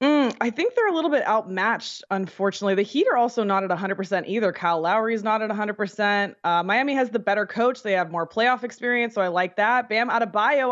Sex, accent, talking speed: female, American, 235 wpm